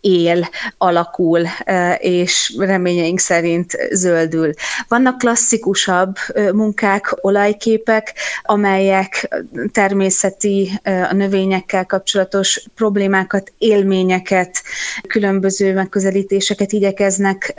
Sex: female